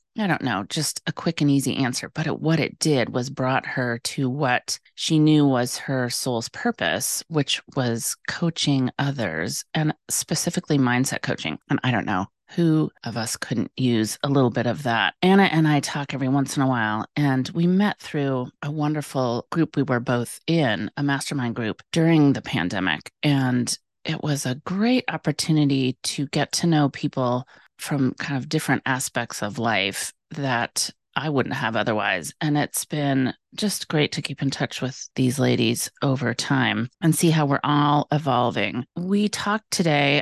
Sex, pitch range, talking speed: female, 125-150 Hz, 175 wpm